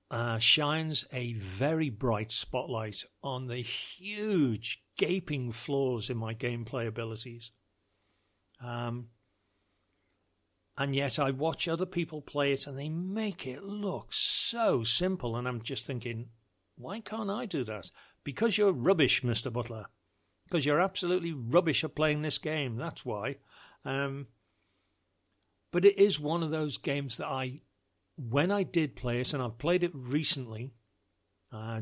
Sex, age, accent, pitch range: male, 60-79, British, 110-165 Hz